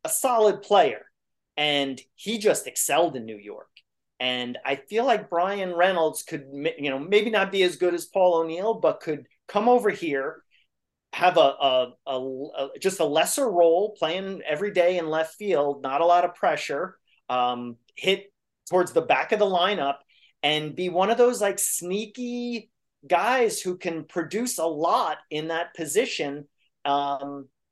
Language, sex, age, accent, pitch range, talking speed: English, male, 30-49, American, 140-185 Hz, 165 wpm